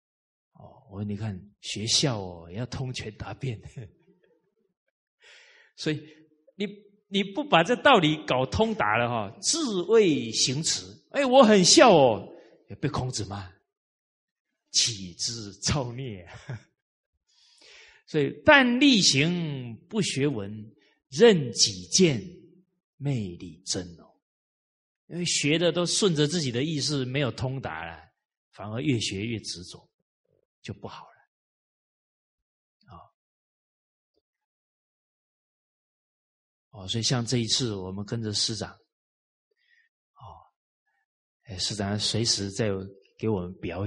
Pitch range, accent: 100-155 Hz, native